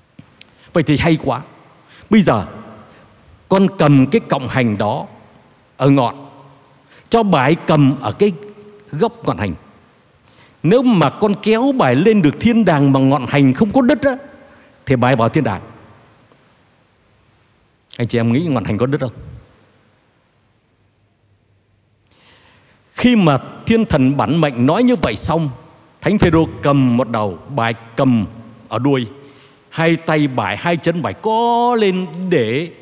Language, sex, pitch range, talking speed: Vietnamese, male, 115-165 Hz, 145 wpm